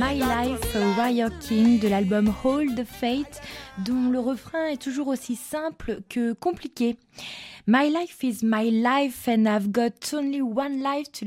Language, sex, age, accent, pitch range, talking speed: French, female, 20-39, French, 215-280 Hz, 160 wpm